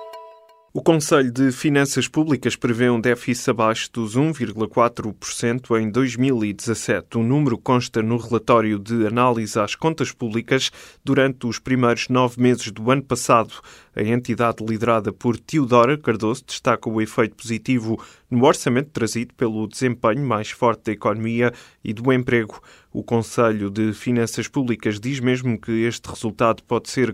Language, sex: Portuguese, male